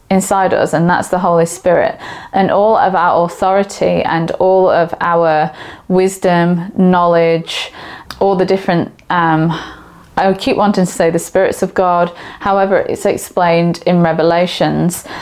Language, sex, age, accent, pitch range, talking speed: English, female, 20-39, British, 175-205 Hz, 140 wpm